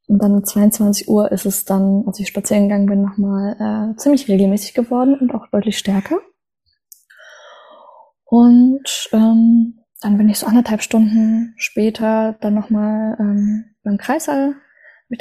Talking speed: 155 wpm